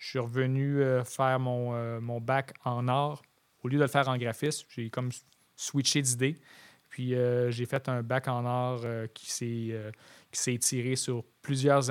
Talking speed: 175 wpm